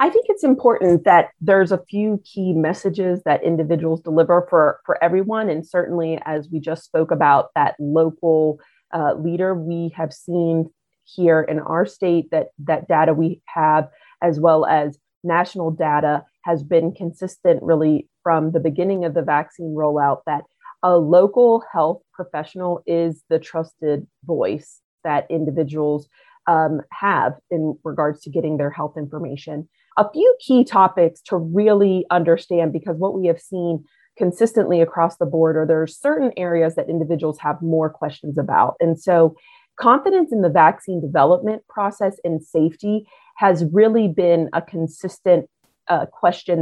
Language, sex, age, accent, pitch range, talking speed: English, female, 30-49, American, 160-185 Hz, 155 wpm